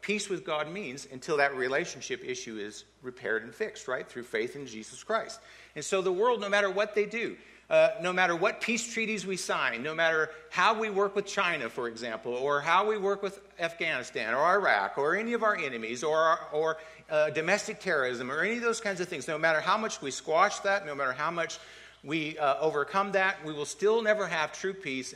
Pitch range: 140-205 Hz